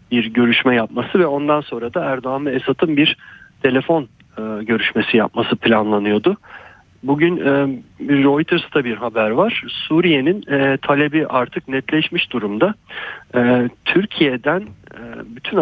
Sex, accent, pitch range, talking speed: male, native, 115-145 Hz, 125 wpm